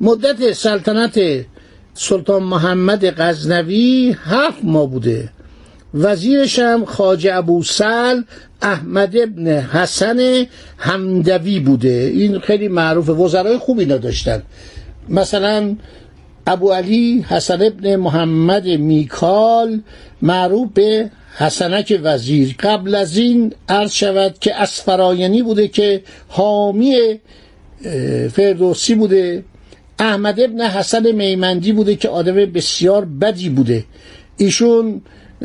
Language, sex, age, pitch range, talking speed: Persian, male, 60-79, 170-220 Hz, 100 wpm